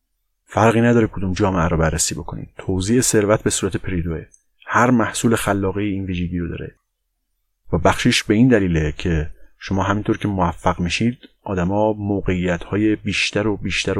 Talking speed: 160 wpm